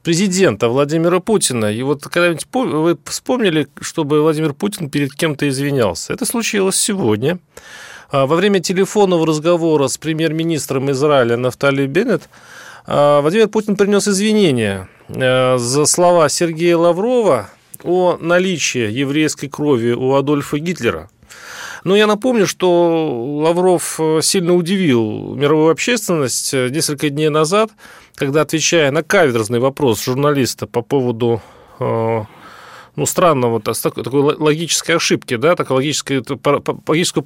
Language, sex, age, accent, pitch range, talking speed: Russian, male, 30-49, native, 130-175 Hz, 110 wpm